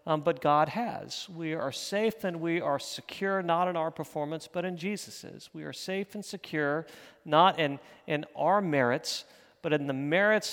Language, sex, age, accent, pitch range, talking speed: English, male, 40-59, American, 150-190 Hz, 180 wpm